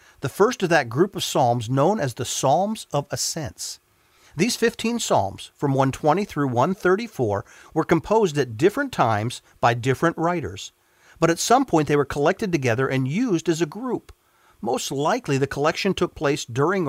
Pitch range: 125-175 Hz